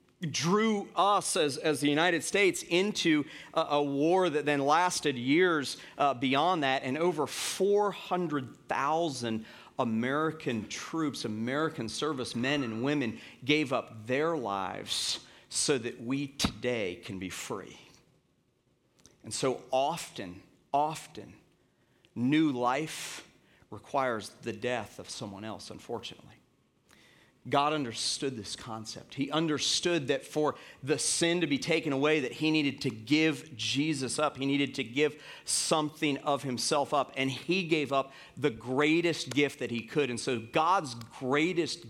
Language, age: English, 40-59